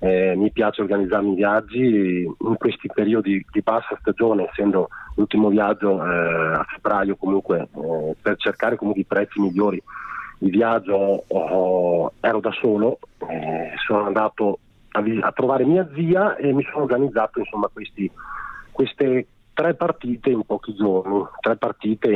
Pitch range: 95-120 Hz